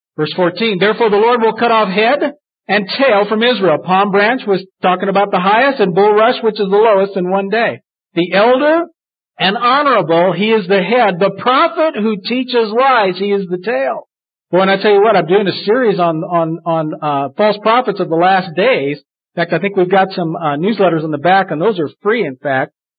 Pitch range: 170-220 Hz